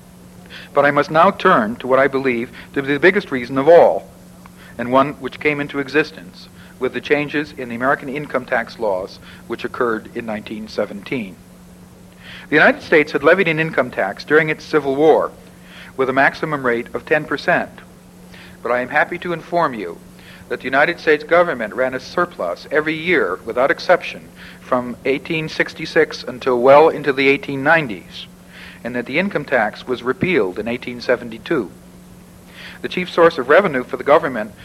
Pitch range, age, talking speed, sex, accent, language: 125-160 Hz, 60-79, 165 wpm, male, American, English